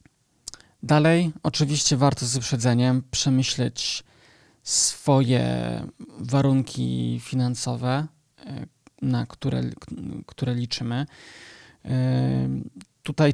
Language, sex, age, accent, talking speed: Polish, male, 20-39, native, 65 wpm